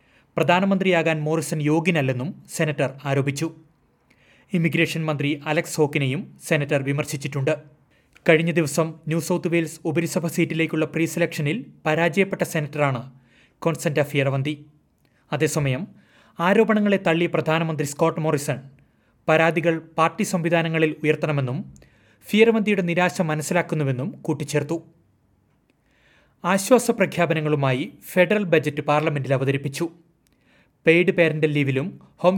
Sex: male